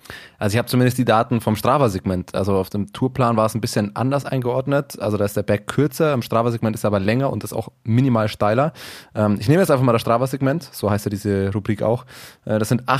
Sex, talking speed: male, 235 wpm